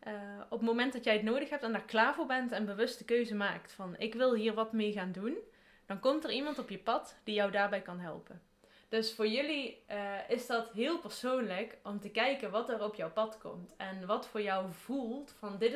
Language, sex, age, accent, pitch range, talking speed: Dutch, female, 20-39, Dutch, 200-235 Hz, 240 wpm